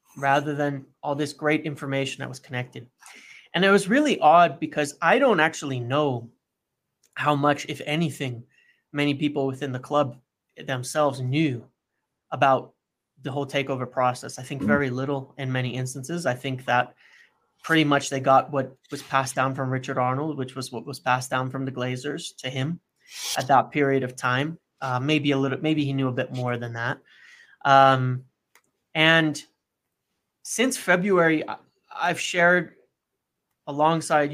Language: English